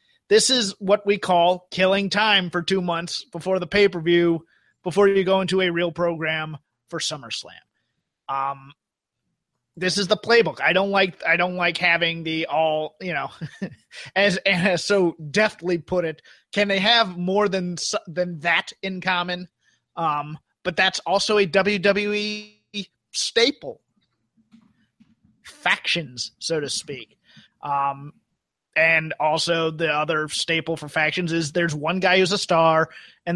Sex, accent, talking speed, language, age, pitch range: male, American, 145 wpm, English, 30-49, 160-195 Hz